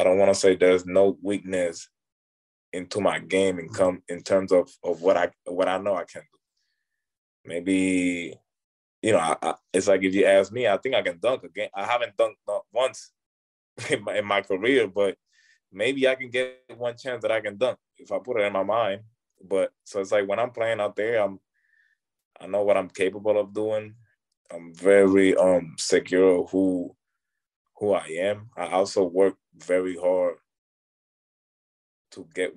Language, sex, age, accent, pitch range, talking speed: English, male, 20-39, American, 90-135 Hz, 185 wpm